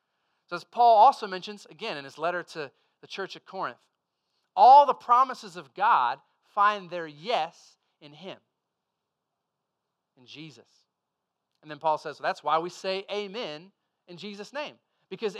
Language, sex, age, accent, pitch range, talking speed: English, male, 30-49, American, 170-225 Hz, 150 wpm